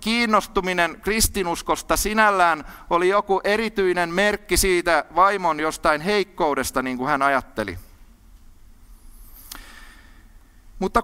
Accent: native